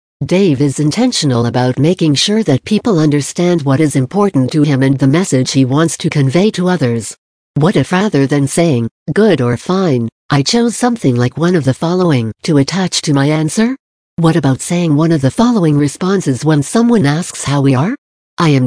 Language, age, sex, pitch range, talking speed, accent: English, 60-79, female, 135-180 Hz, 195 wpm, American